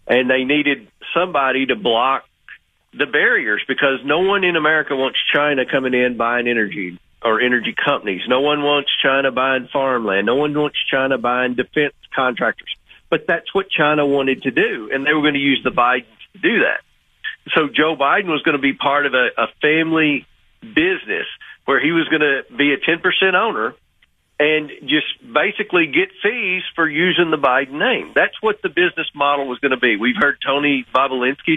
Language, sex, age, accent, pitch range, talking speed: English, male, 40-59, American, 135-175 Hz, 190 wpm